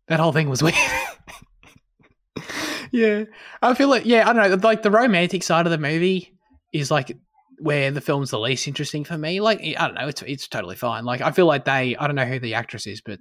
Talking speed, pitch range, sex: 230 wpm, 120-165 Hz, male